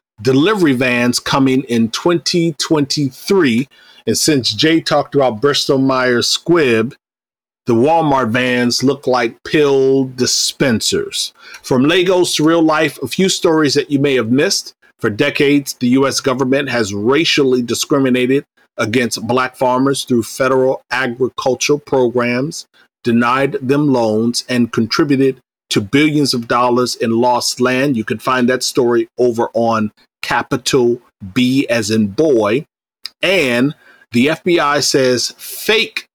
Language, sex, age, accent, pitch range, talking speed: English, male, 40-59, American, 120-145 Hz, 130 wpm